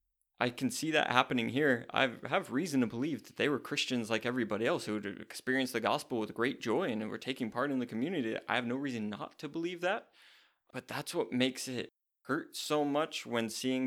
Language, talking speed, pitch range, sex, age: English, 220 wpm, 110-130 Hz, male, 20-39